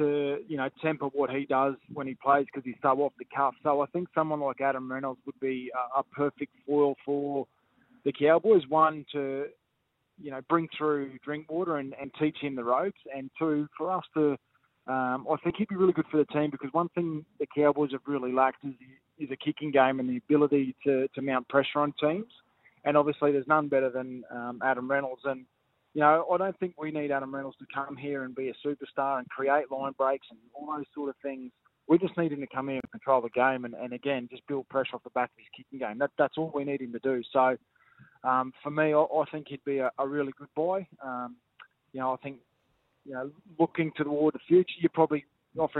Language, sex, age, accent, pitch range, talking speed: English, male, 20-39, Australian, 130-150 Hz, 235 wpm